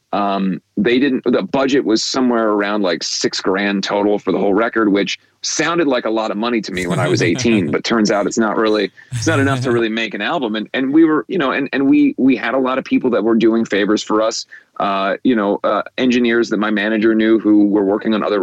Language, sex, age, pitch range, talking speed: English, male, 30-49, 105-125 Hz, 255 wpm